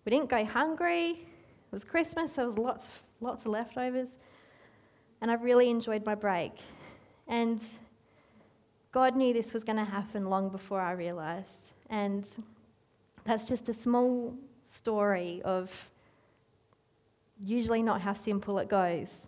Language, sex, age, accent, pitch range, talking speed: English, female, 30-49, Australian, 195-245 Hz, 135 wpm